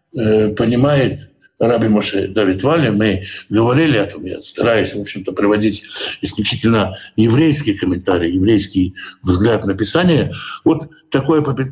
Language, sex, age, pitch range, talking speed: Russian, male, 60-79, 105-145 Hz, 120 wpm